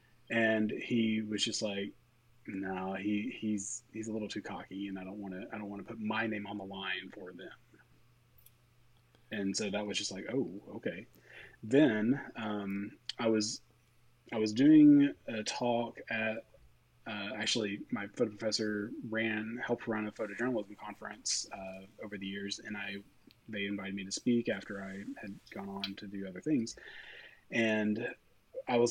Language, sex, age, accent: English, male, 30-49, American